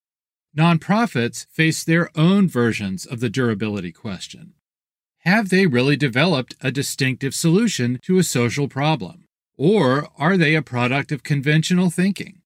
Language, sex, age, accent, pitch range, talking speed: English, male, 40-59, American, 125-175 Hz, 135 wpm